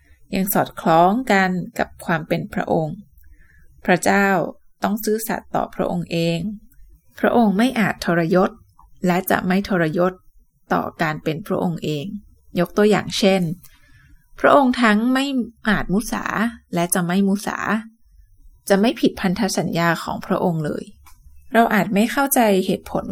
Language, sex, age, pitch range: Thai, female, 20-39, 175-220 Hz